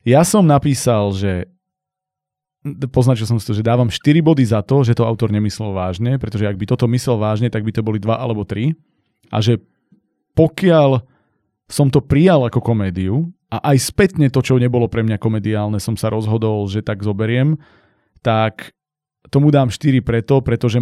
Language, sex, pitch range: Slovak, male, 110-130 Hz